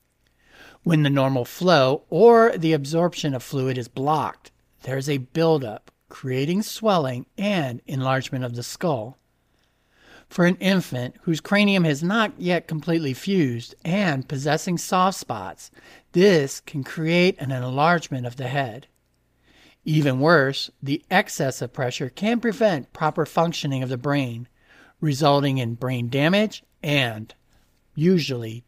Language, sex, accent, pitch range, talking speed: English, male, American, 130-175 Hz, 130 wpm